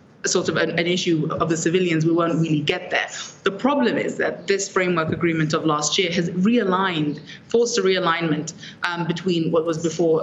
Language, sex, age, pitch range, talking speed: English, female, 20-39, 165-195 Hz, 190 wpm